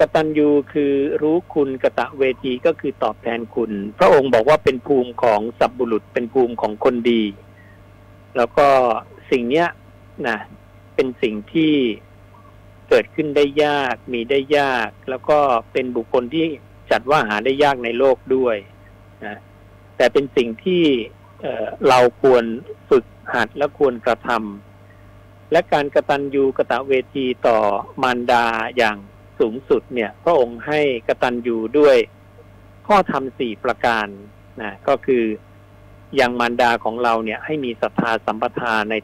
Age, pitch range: 60-79, 100-135 Hz